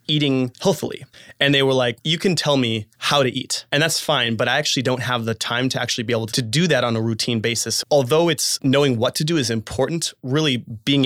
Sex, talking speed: male, 240 wpm